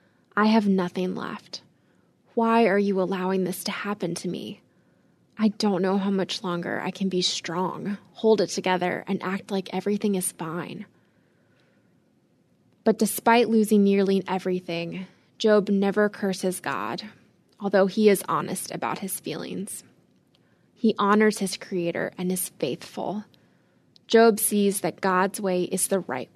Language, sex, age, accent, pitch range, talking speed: English, female, 20-39, American, 185-215 Hz, 145 wpm